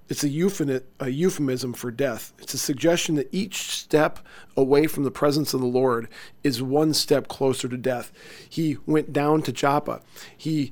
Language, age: English, 40-59